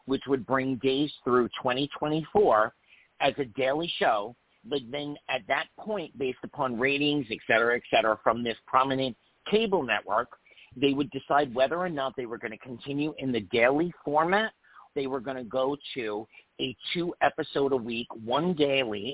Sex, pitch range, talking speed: male, 125-155 Hz, 165 wpm